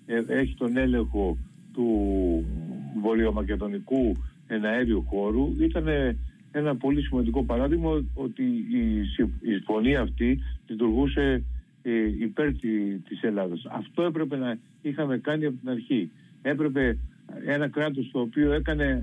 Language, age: Greek, 50-69